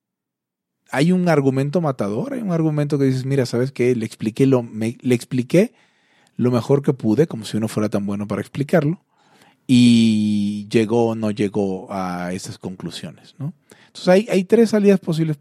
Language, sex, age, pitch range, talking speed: Italian, male, 30-49, 110-150 Hz, 160 wpm